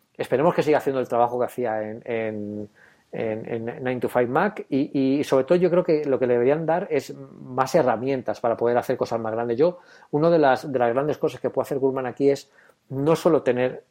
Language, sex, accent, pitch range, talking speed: Spanish, male, Spanish, 115-145 Hz, 220 wpm